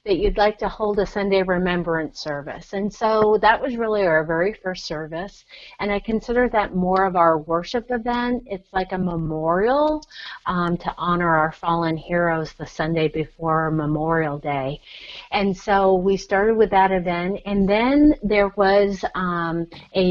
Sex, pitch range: female, 170-205 Hz